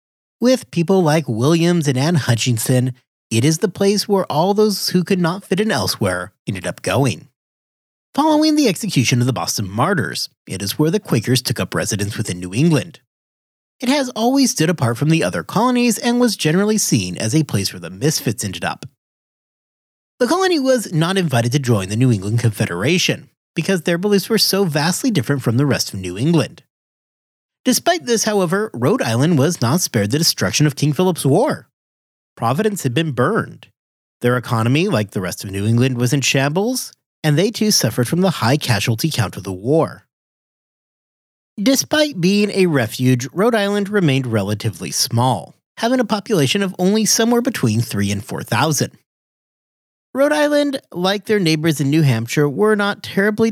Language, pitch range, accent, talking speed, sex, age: English, 120-205 Hz, American, 175 wpm, male, 30-49